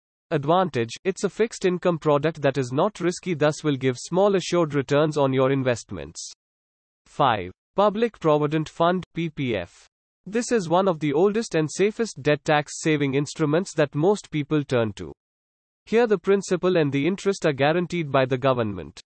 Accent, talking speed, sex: Indian, 160 wpm, male